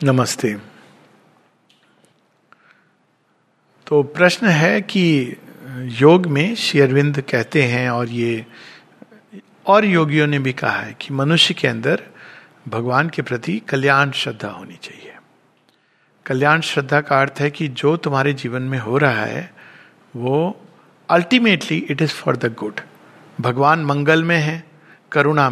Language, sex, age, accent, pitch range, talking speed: Hindi, male, 50-69, native, 140-180 Hz, 130 wpm